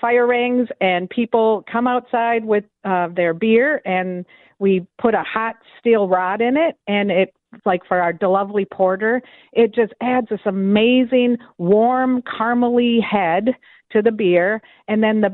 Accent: American